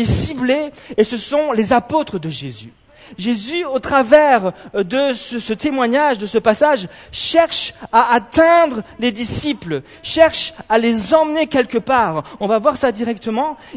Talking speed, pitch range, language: 150 wpm, 225-295 Hz, French